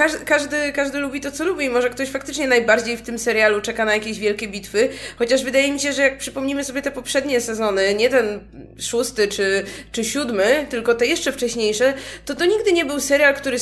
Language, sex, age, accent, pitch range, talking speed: Polish, female, 20-39, native, 225-285 Hz, 205 wpm